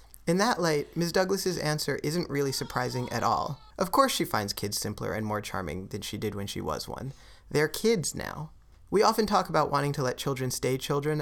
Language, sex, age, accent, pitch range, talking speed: English, male, 30-49, American, 120-160 Hz, 215 wpm